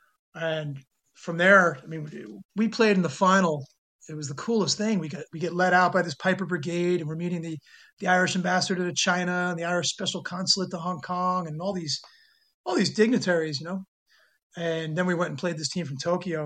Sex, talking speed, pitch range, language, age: male, 220 wpm, 155-185 Hz, English, 30-49